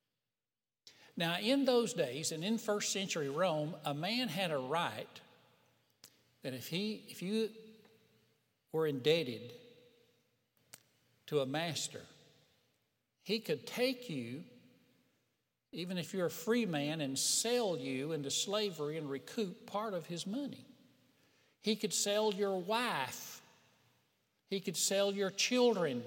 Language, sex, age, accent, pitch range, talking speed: English, male, 60-79, American, 150-235 Hz, 125 wpm